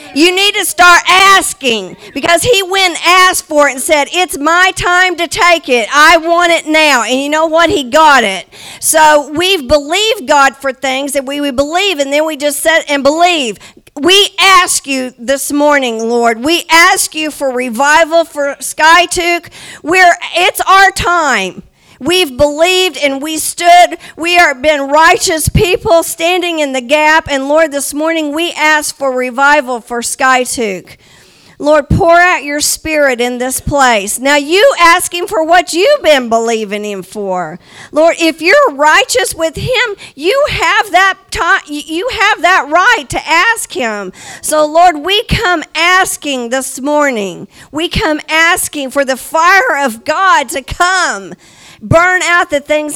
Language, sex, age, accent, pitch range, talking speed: English, female, 50-69, American, 280-350 Hz, 165 wpm